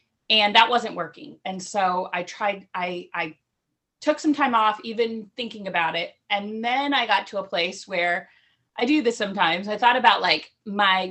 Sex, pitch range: female, 185-245 Hz